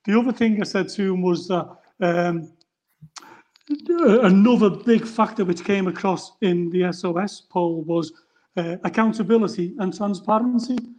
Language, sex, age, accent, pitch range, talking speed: English, male, 40-59, British, 185-225 Hz, 135 wpm